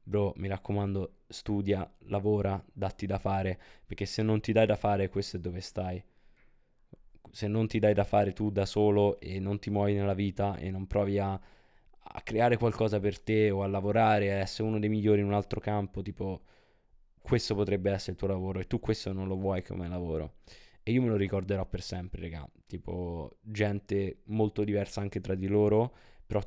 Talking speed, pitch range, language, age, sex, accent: 195 wpm, 95-105 Hz, Italian, 20-39, male, native